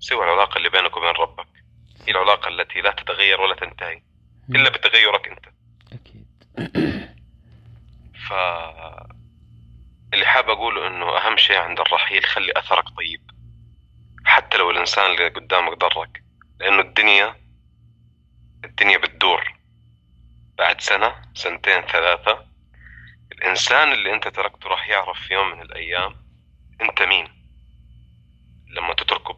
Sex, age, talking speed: male, 30-49, 115 wpm